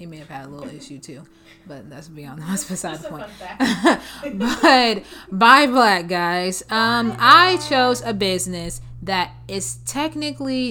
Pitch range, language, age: 165-200 Hz, English, 20-39